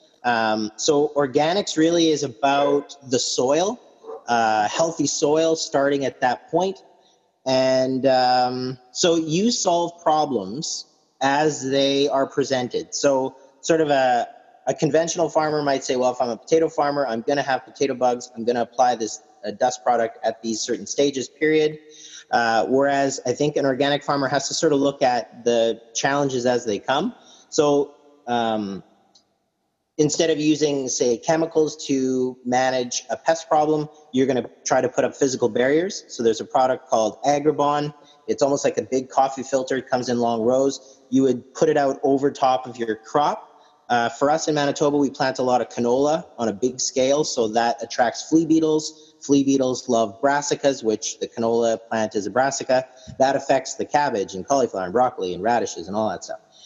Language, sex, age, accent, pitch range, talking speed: English, male, 30-49, American, 125-150 Hz, 180 wpm